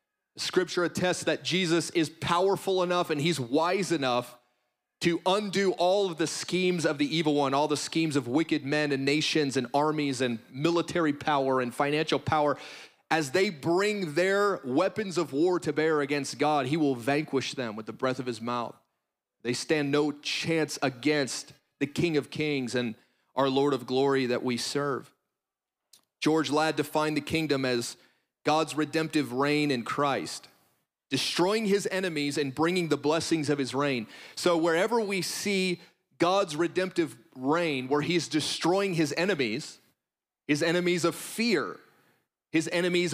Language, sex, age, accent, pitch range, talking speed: English, male, 30-49, American, 140-175 Hz, 160 wpm